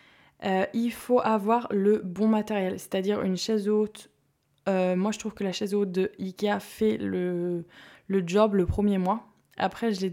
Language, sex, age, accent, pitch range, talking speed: French, female, 20-39, French, 180-215 Hz, 185 wpm